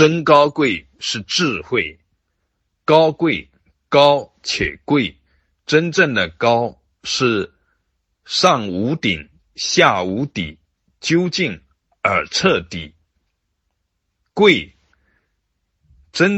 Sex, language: male, Chinese